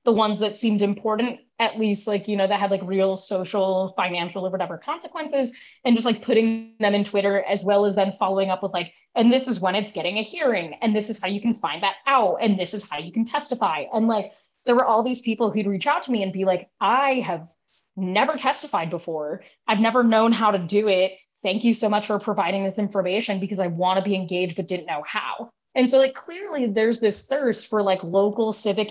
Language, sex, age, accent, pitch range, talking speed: English, female, 20-39, American, 195-235 Hz, 235 wpm